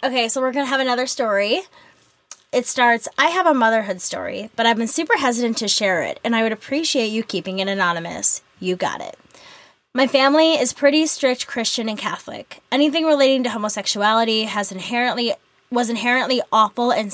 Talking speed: 180 wpm